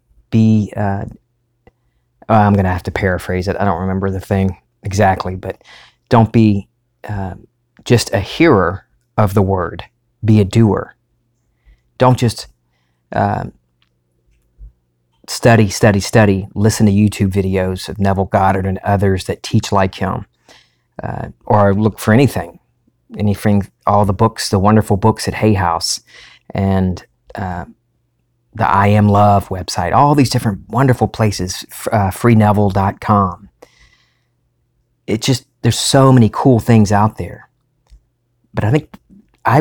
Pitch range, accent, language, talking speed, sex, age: 95-120 Hz, American, English, 135 wpm, male, 40-59